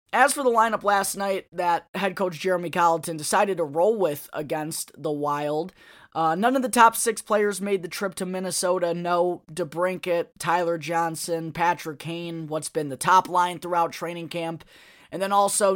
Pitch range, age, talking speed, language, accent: 160-195 Hz, 20-39, 180 wpm, English, American